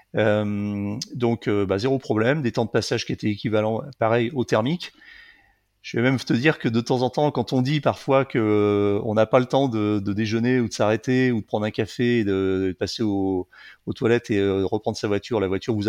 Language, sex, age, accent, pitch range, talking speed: French, male, 30-49, French, 100-130 Hz, 235 wpm